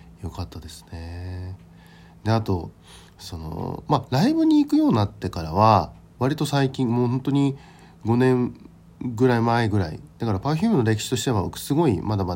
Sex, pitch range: male, 85-135 Hz